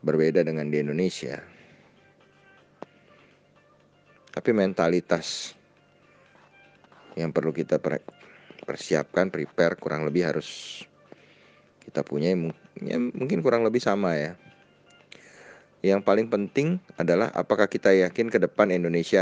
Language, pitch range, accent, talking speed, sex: Indonesian, 75-90 Hz, native, 100 wpm, male